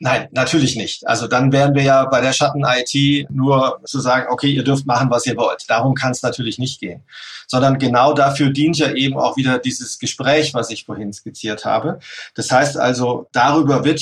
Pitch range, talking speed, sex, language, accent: 125-145 Hz, 200 wpm, male, German, German